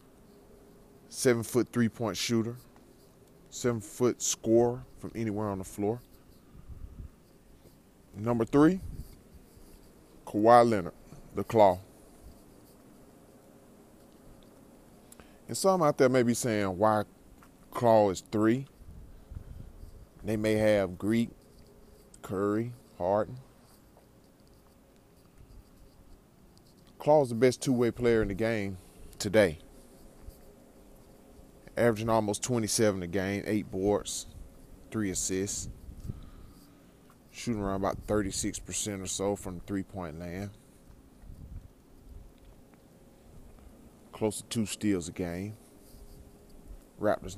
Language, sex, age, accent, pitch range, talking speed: English, male, 20-39, American, 95-115 Hz, 85 wpm